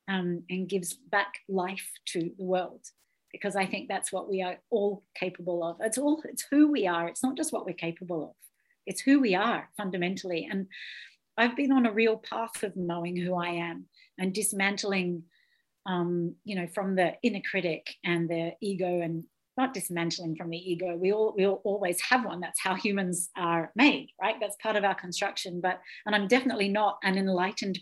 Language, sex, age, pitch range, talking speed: English, female, 40-59, 180-215 Hz, 190 wpm